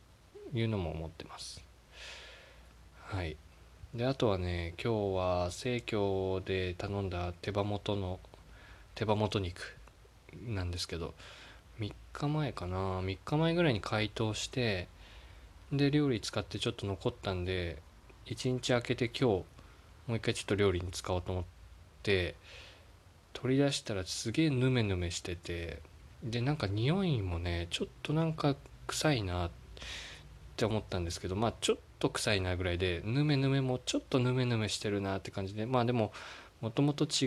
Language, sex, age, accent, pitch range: Japanese, male, 20-39, native, 90-120 Hz